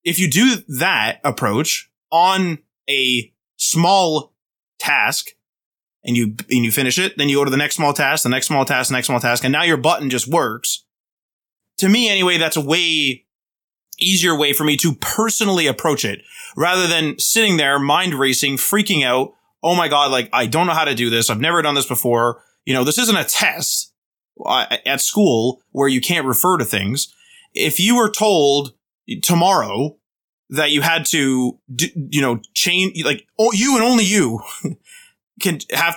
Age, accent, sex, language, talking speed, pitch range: 20-39, American, male, English, 180 wpm, 130-180 Hz